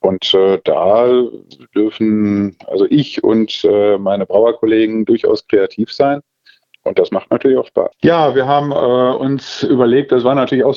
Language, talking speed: German, 160 wpm